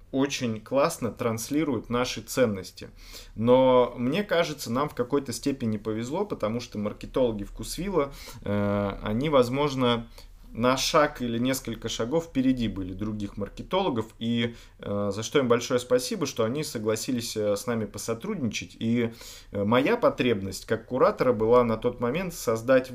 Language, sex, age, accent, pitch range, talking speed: Russian, male, 30-49, native, 105-130 Hz, 135 wpm